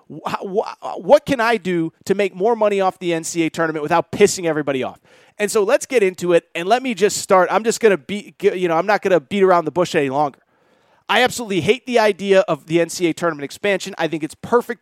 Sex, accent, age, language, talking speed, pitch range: male, American, 30-49, English, 235 wpm, 170-225 Hz